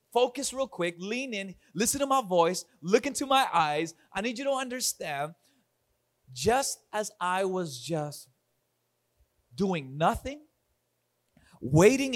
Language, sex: English, male